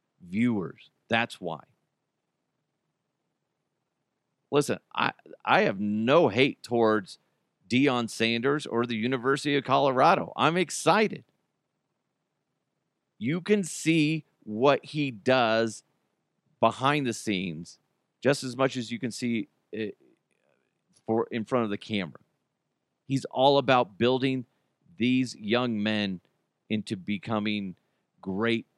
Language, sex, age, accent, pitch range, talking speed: English, male, 40-59, American, 110-140 Hz, 110 wpm